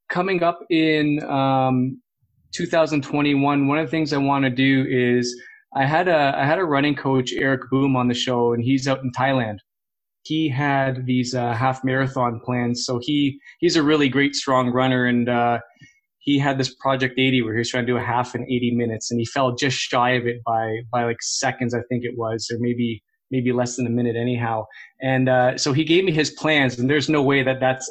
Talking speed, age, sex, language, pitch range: 220 wpm, 20-39, male, English, 125-145 Hz